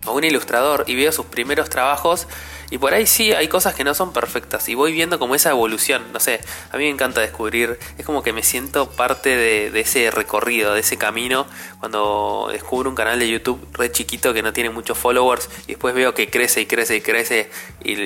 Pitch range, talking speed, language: 105-130 Hz, 225 wpm, Spanish